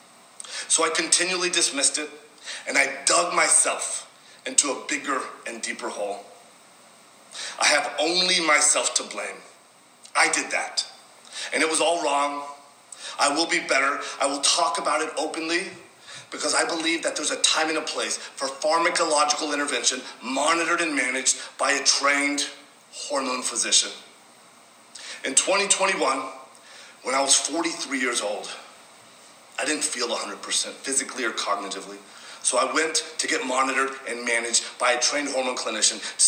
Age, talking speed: 40-59, 145 wpm